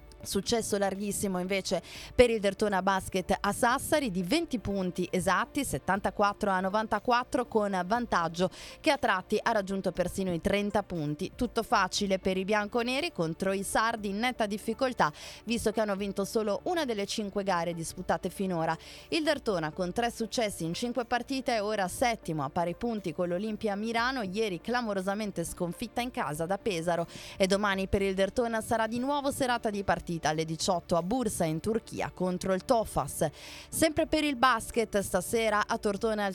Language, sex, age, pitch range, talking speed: Italian, female, 20-39, 185-235 Hz, 165 wpm